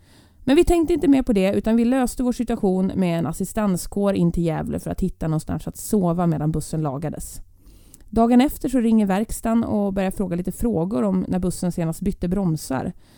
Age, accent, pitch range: 30-49, native, 165-225 Hz